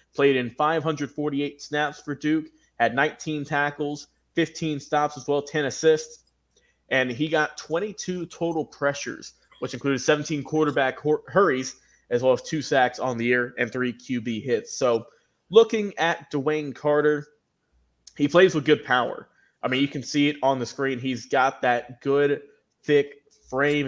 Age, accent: 20-39, American